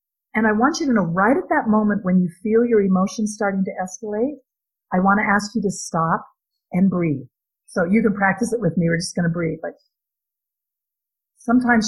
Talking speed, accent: 205 wpm, American